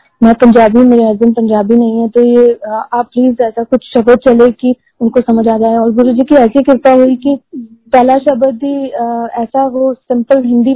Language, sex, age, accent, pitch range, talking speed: Hindi, female, 20-39, native, 235-265 Hz, 200 wpm